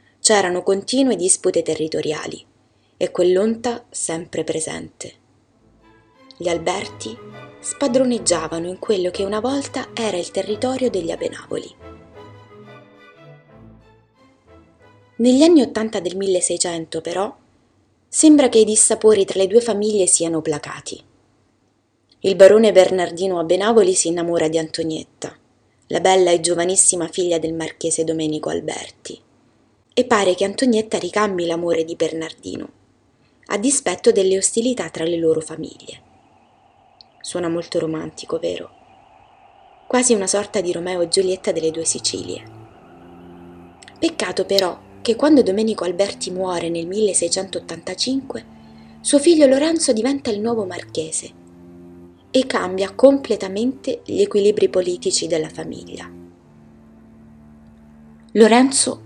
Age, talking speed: 20-39, 110 wpm